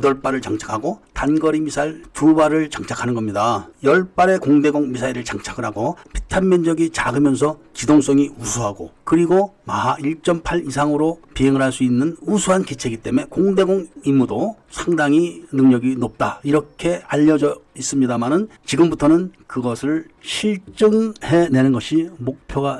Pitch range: 130-175 Hz